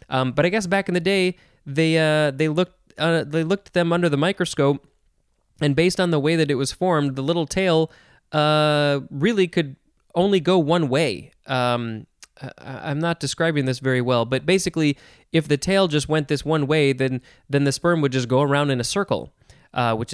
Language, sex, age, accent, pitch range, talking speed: English, male, 20-39, American, 130-170 Hz, 210 wpm